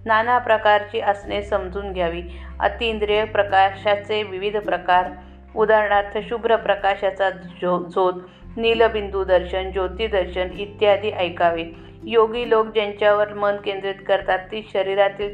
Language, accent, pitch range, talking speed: Marathi, native, 185-215 Hz, 65 wpm